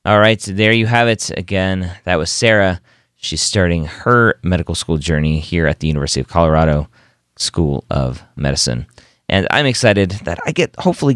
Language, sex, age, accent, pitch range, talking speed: English, male, 30-49, American, 80-110 Hz, 170 wpm